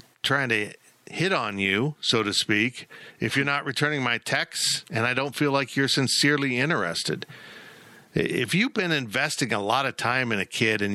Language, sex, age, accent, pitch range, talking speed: English, male, 50-69, American, 115-145 Hz, 185 wpm